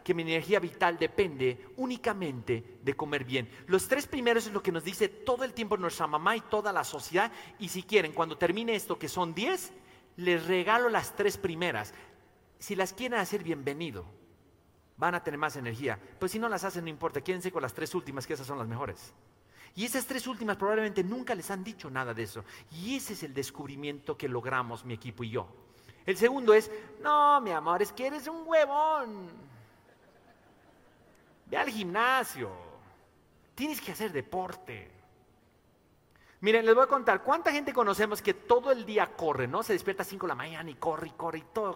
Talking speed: 195 wpm